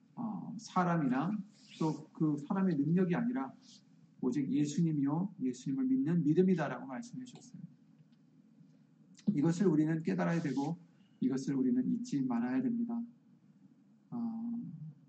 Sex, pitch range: male, 175-235 Hz